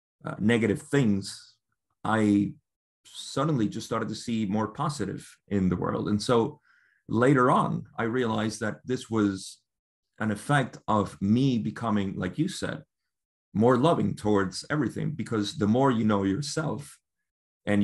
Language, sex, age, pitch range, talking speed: English, male, 30-49, 100-120 Hz, 140 wpm